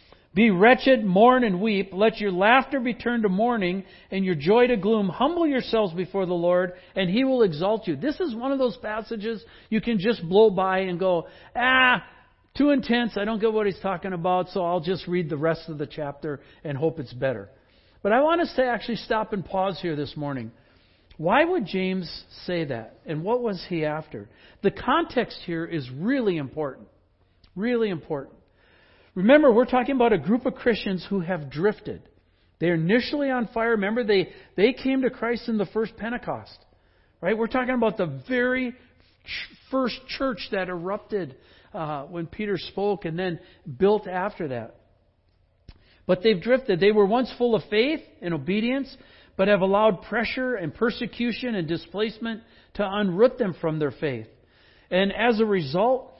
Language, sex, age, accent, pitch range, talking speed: English, male, 60-79, American, 170-240 Hz, 175 wpm